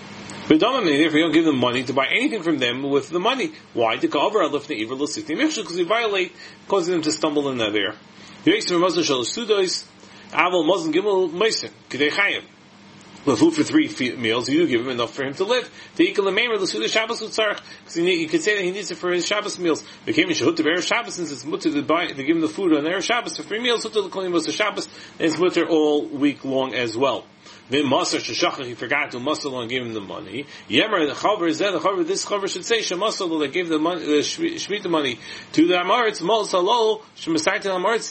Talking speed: 205 wpm